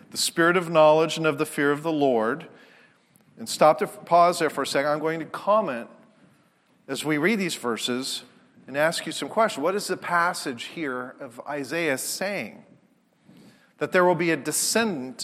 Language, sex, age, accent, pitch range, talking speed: English, male, 40-59, American, 150-185 Hz, 185 wpm